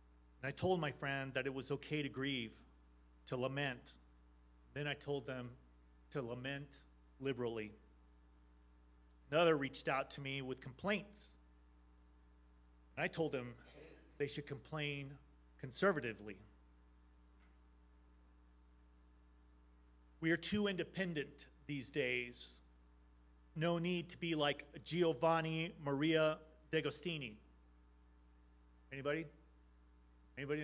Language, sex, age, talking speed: English, male, 30-49, 100 wpm